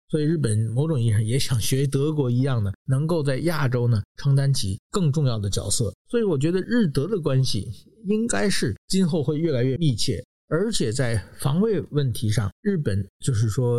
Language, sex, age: Chinese, male, 50-69